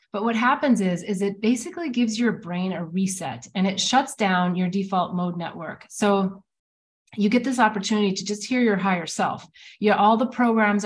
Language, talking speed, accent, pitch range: English, 195 wpm, American, 185-220 Hz